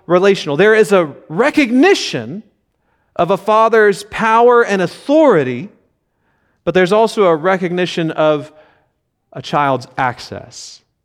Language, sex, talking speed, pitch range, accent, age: English, male, 110 wpm, 165-215 Hz, American, 30-49